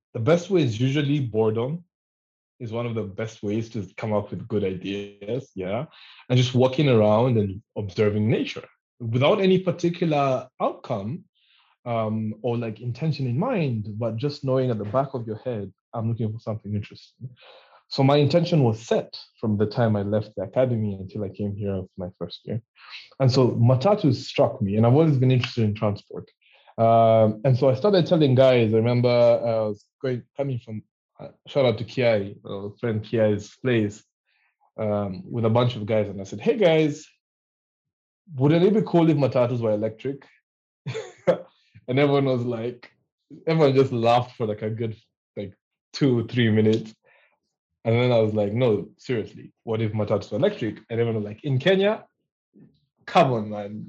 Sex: male